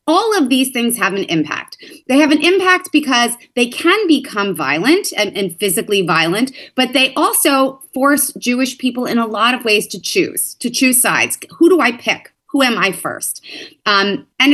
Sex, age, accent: female, 30-49, American